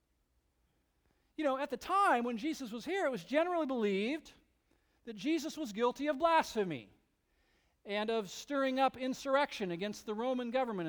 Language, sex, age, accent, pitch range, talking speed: English, male, 40-59, American, 215-310 Hz, 155 wpm